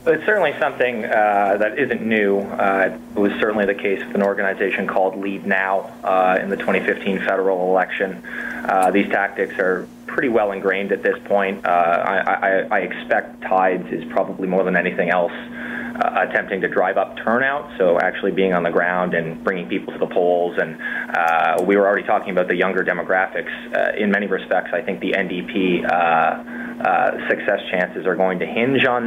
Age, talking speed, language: 20-39, 190 wpm, English